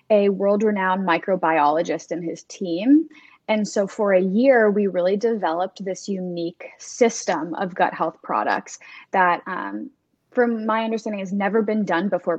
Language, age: English, 10-29